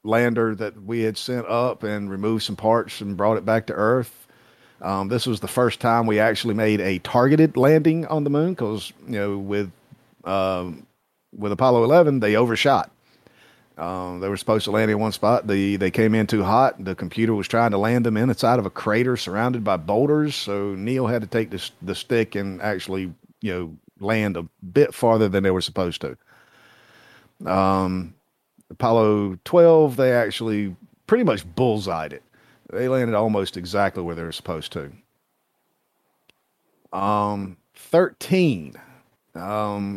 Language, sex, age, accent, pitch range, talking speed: English, male, 50-69, American, 95-120 Hz, 170 wpm